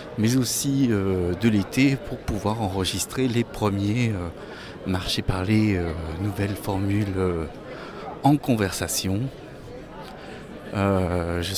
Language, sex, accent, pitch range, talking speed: French, male, French, 95-125 Hz, 115 wpm